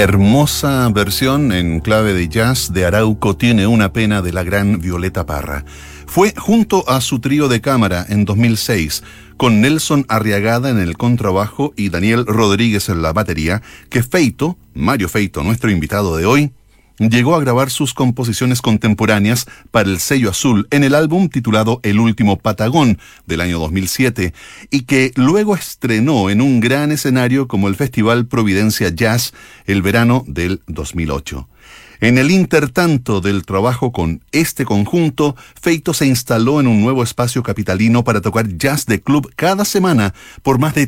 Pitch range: 100-135 Hz